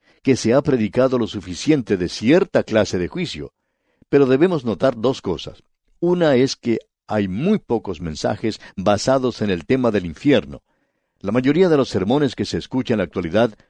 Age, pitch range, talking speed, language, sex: 60-79, 105-135 Hz, 175 wpm, English, male